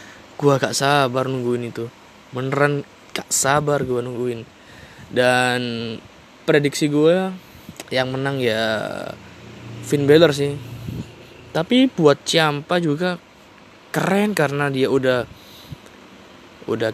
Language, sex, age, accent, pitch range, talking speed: Indonesian, male, 20-39, native, 125-155 Hz, 95 wpm